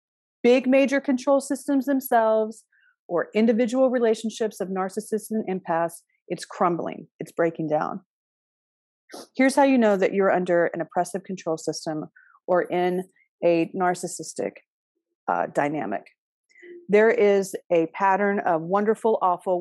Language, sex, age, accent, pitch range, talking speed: English, female, 40-59, American, 170-235 Hz, 125 wpm